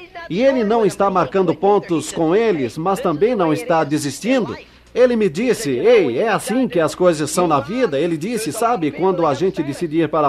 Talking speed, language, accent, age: 200 wpm, Portuguese, Brazilian, 50-69